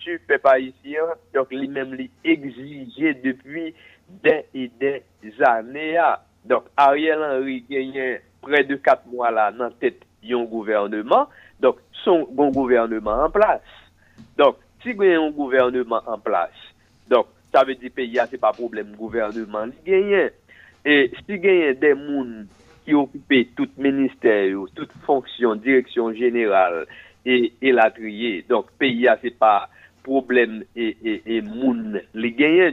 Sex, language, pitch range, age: male, French, 120-160 Hz, 60-79